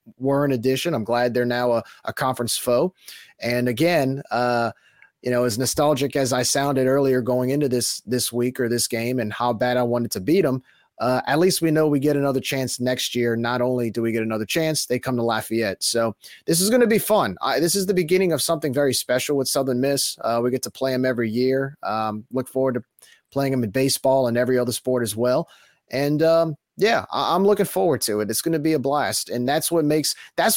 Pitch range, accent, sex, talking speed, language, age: 120-145 Hz, American, male, 235 wpm, English, 30-49